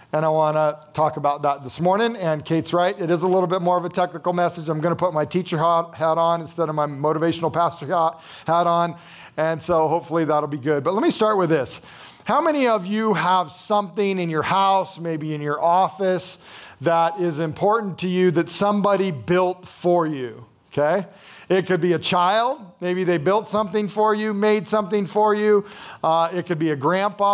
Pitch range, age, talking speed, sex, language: 160-200 Hz, 40-59, 205 wpm, male, English